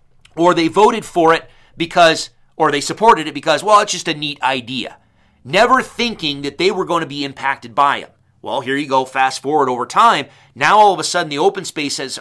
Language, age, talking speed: English, 30-49, 215 wpm